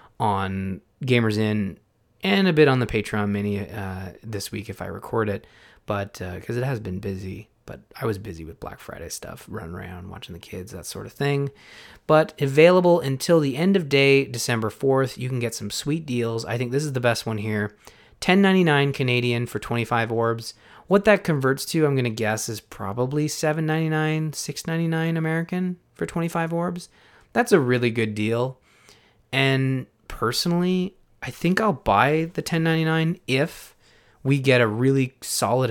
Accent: American